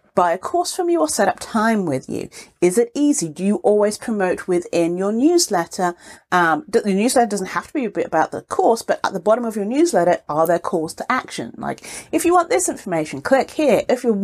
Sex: female